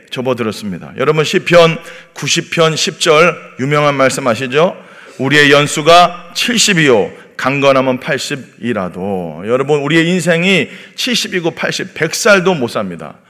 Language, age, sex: Korean, 40-59, male